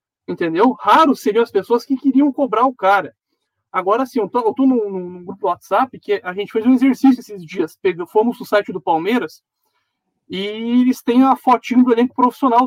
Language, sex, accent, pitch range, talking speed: Portuguese, male, Brazilian, 195-300 Hz, 190 wpm